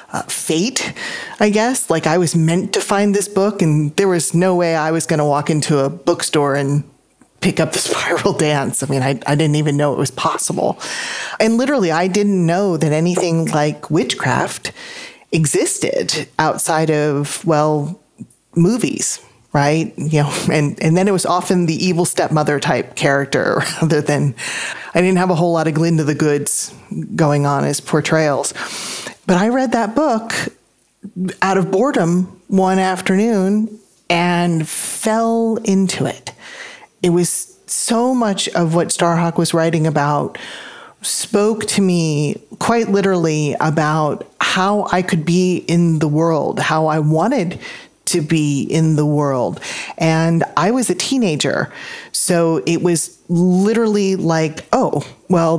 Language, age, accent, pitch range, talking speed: English, 30-49, American, 155-195 Hz, 150 wpm